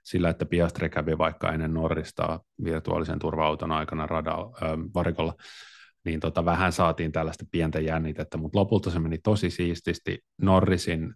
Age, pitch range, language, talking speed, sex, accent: 30-49, 80-95 Hz, Finnish, 140 wpm, male, native